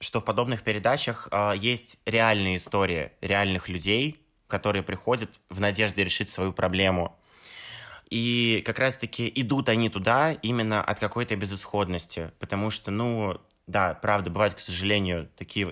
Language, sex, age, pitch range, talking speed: Russian, male, 20-39, 95-115 Hz, 135 wpm